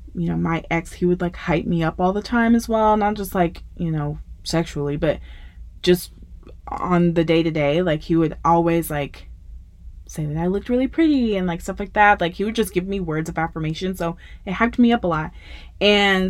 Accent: American